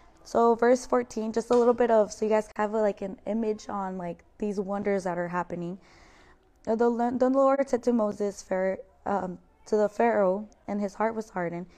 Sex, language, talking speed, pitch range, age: female, English, 190 wpm, 195-230 Hz, 20-39